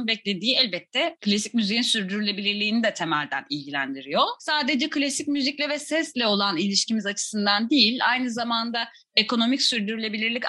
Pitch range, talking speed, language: 190-255 Hz, 120 wpm, Turkish